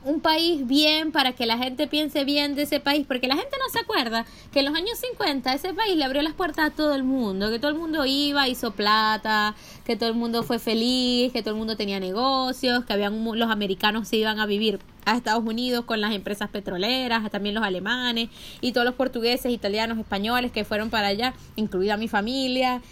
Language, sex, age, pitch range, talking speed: Spanish, female, 20-39, 220-290 Hz, 220 wpm